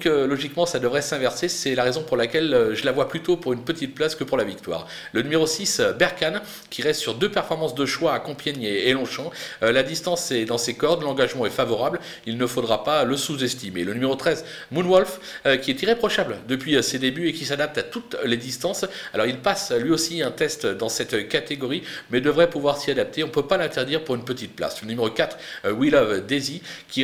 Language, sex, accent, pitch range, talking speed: French, male, French, 130-175 Hz, 220 wpm